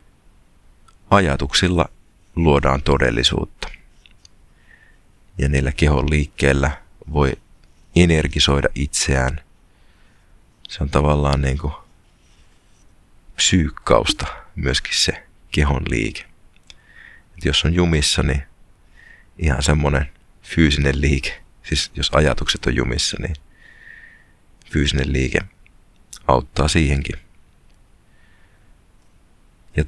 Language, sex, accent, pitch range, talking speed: Finnish, male, native, 70-85 Hz, 75 wpm